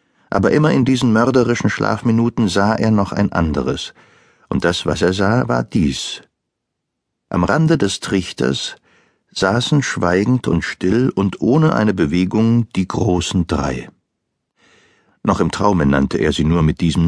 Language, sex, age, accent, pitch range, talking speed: German, male, 60-79, German, 90-120 Hz, 150 wpm